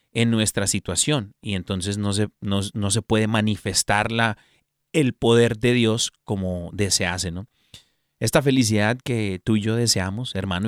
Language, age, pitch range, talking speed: Spanish, 30-49, 95-125 Hz, 135 wpm